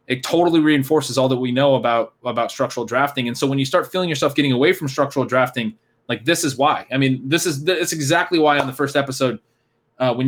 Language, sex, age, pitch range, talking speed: English, male, 20-39, 120-145 Hz, 235 wpm